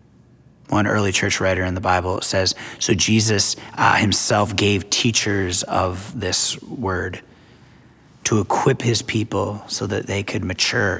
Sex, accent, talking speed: male, American, 140 wpm